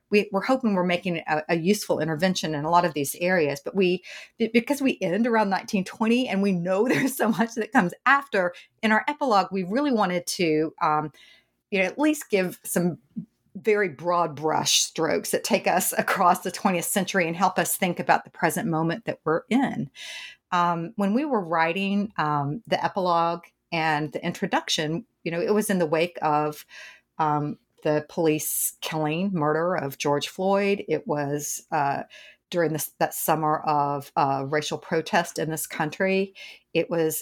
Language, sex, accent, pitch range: English, female, American, 155-200 Hz